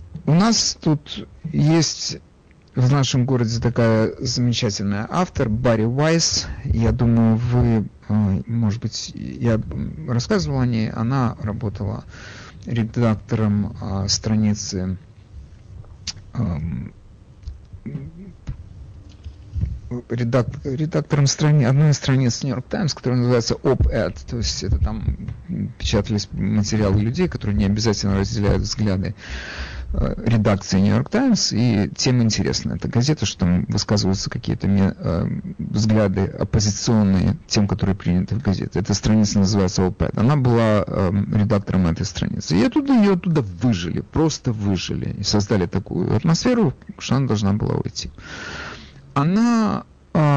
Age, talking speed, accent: 50-69, 115 wpm, native